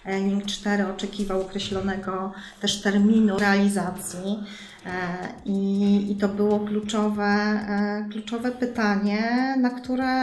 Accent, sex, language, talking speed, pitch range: native, female, Polish, 90 wpm, 195-225 Hz